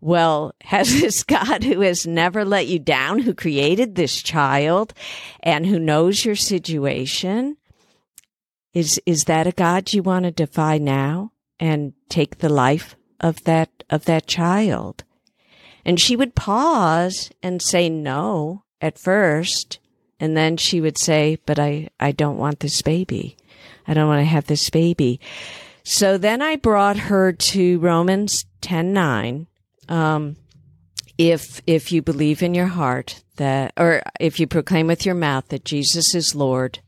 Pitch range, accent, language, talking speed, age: 140-175 Hz, American, English, 155 wpm, 50-69